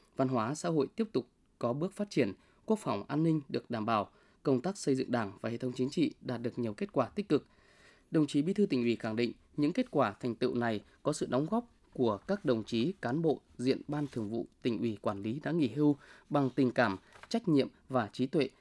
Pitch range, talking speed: 115-150 Hz, 250 wpm